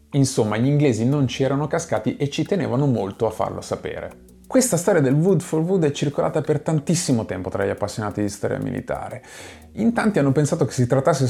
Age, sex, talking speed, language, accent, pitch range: 30-49, male, 200 wpm, Italian, native, 110-165 Hz